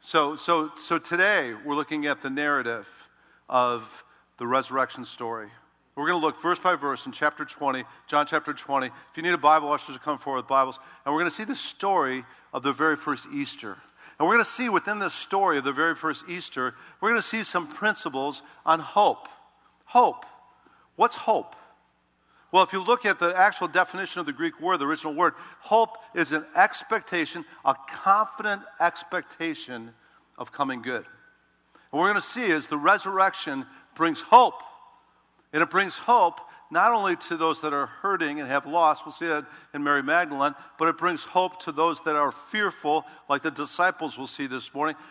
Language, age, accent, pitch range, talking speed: English, 50-69, American, 140-180 Hz, 190 wpm